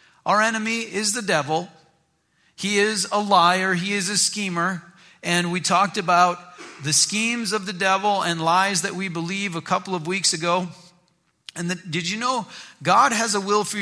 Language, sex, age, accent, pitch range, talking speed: English, male, 40-59, American, 155-195 Hz, 180 wpm